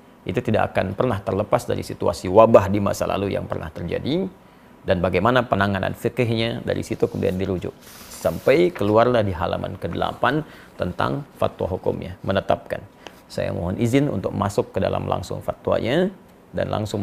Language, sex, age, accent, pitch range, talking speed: Indonesian, male, 40-59, native, 95-125 Hz, 150 wpm